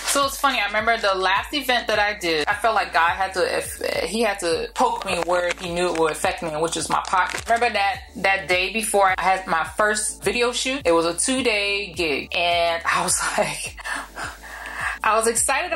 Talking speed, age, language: 215 wpm, 20-39, English